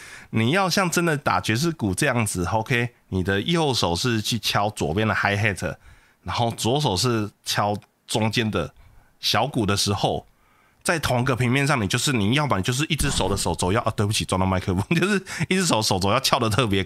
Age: 20-39